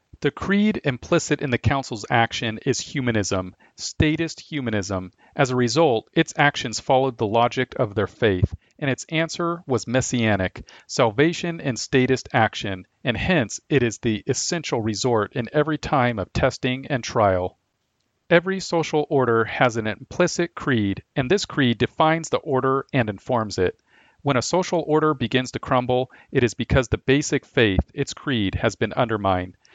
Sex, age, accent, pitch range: male, 40-59, American, 115-150 Hz